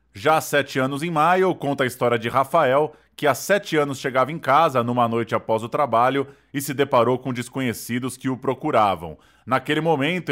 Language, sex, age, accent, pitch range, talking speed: Portuguese, male, 20-39, Brazilian, 125-150 Hz, 190 wpm